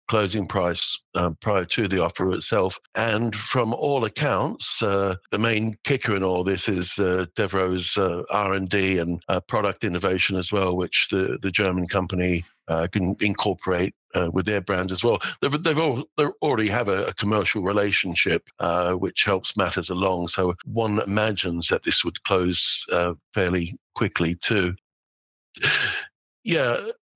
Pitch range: 95-115 Hz